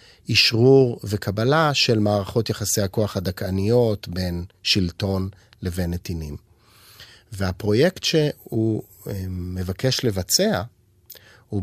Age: 30-49